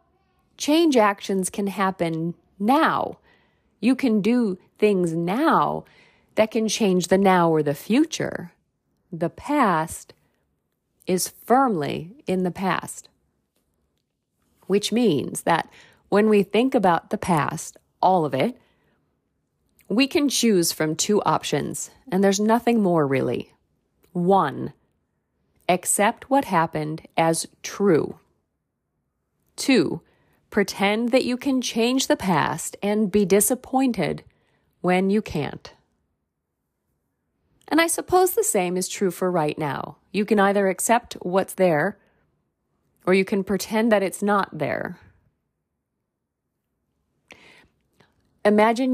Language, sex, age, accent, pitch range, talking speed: English, female, 40-59, American, 175-230 Hz, 115 wpm